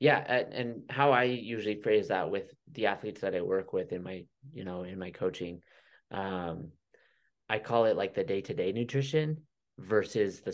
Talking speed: 175 wpm